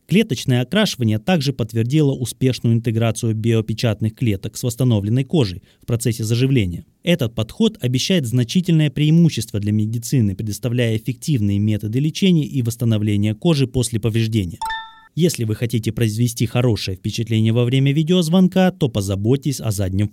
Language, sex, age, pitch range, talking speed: Russian, male, 20-39, 110-155 Hz, 130 wpm